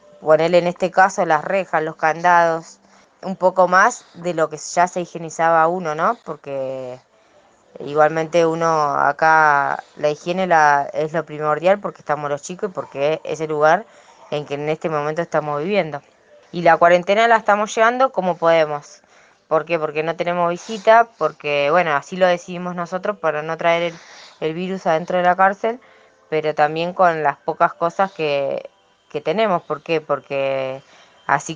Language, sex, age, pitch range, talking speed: Spanish, female, 20-39, 155-195 Hz, 165 wpm